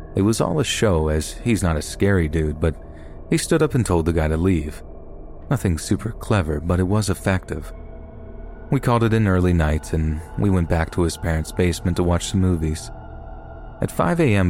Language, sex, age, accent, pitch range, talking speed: English, male, 30-49, American, 80-100 Hz, 200 wpm